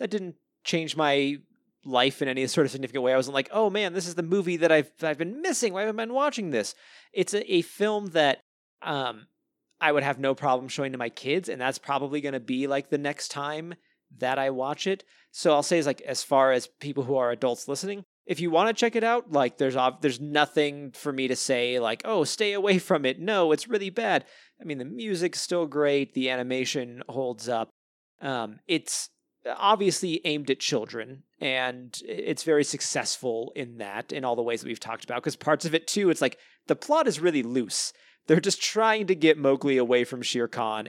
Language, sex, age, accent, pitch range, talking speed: English, male, 30-49, American, 130-180 Hz, 220 wpm